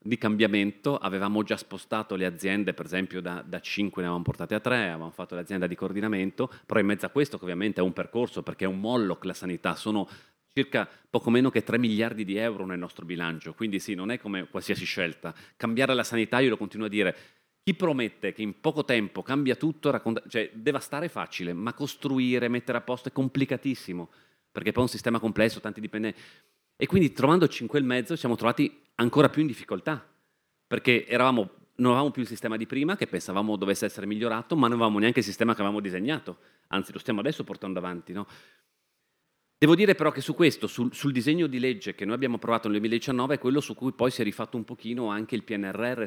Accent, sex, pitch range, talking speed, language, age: native, male, 100-125 Hz, 210 wpm, Italian, 30-49